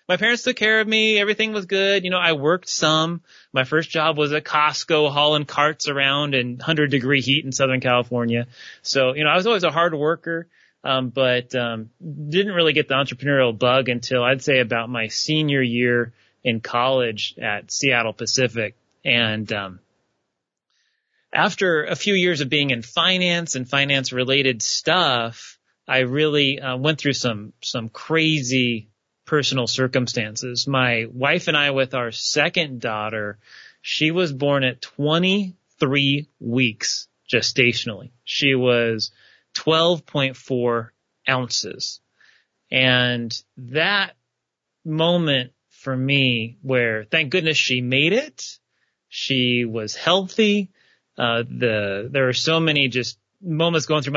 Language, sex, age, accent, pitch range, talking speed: English, male, 30-49, American, 120-155 Hz, 140 wpm